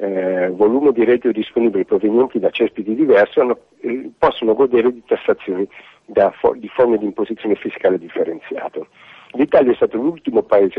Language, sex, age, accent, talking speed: Italian, male, 50-69, native, 155 wpm